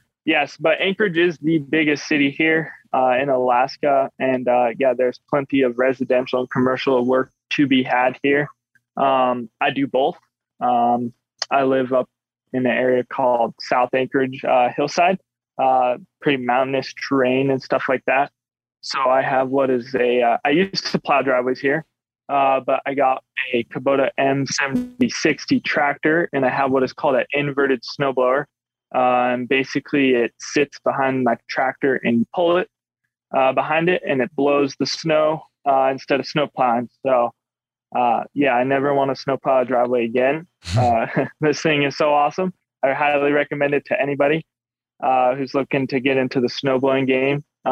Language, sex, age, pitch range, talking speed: English, male, 20-39, 125-145 Hz, 175 wpm